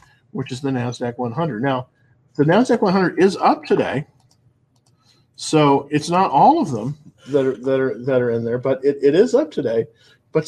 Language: English